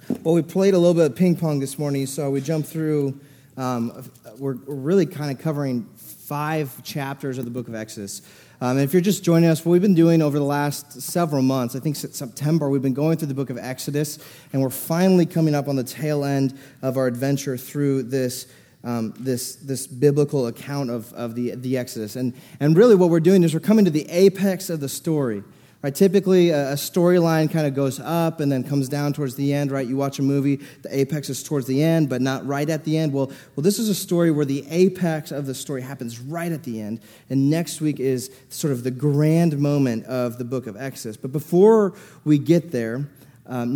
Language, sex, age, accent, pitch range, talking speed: English, male, 30-49, American, 135-165 Hz, 225 wpm